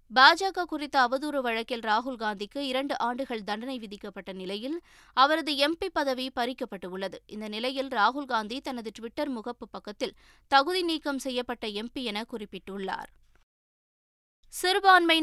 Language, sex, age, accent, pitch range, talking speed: Tamil, female, 20-39, native, 225-295 Hz, 115 wpm